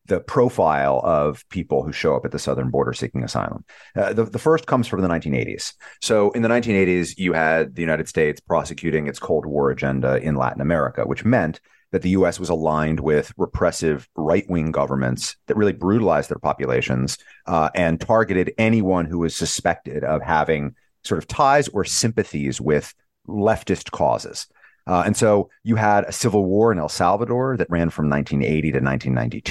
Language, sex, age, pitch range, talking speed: English, male, 30-49, 75-110 Hz, 175 wpm